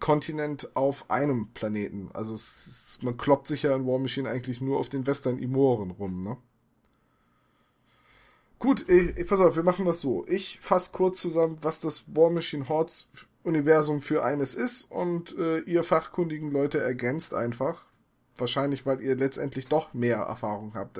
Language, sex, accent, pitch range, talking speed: German, male, German, 130-170 Hz, 165 wpm